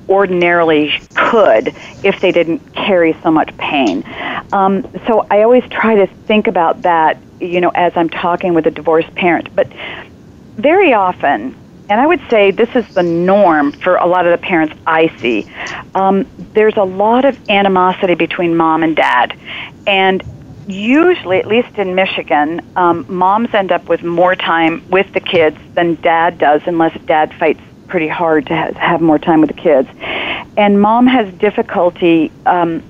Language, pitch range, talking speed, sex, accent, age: English, 165-200 Hz, 170 wpm, female, American, 40-59